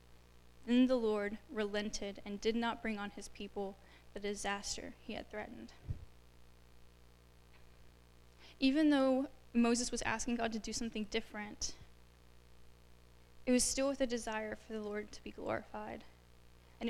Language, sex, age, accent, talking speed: English, female, 10-29, American, 140 wpm